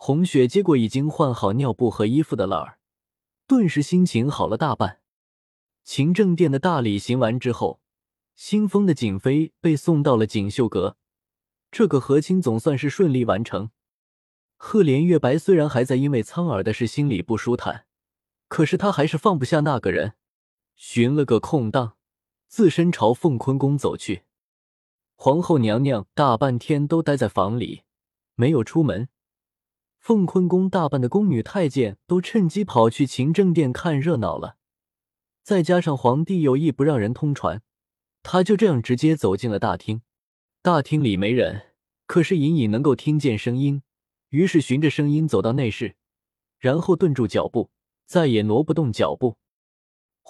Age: 20-39